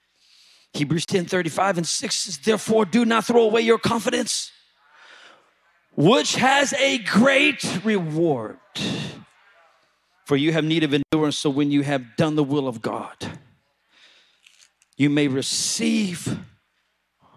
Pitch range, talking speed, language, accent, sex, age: 140-215 Hz, 125 wpm, English, American, male, 40-59